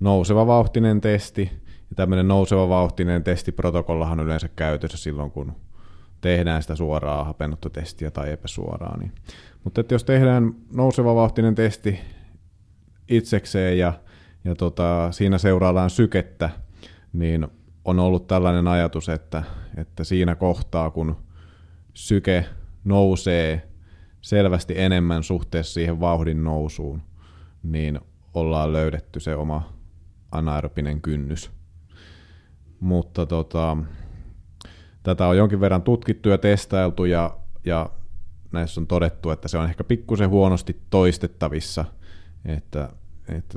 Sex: male